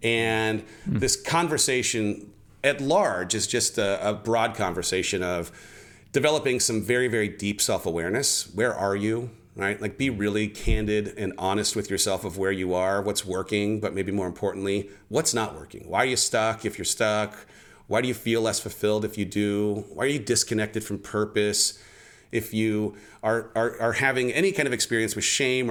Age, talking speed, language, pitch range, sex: 40-59, 180 wpm, English, 105-120 Hz, male